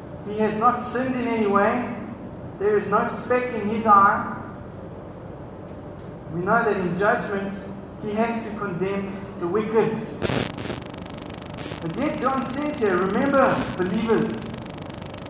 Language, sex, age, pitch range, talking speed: English, male, 60-79, 205-245 Hz, 125 wpm